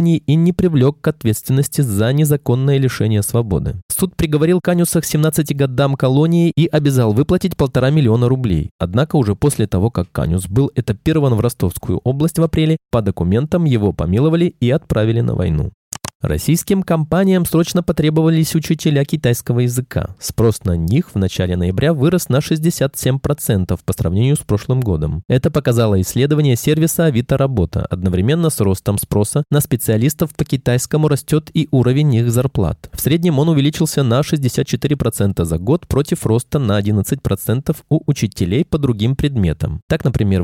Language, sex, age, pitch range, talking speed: Russian, male, 20-39, 105-155 Hz, 150 wpm